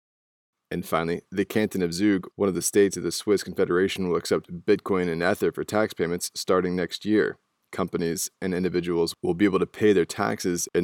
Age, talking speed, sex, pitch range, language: 20-39, 200 wpm, male, 85-100 Hz, English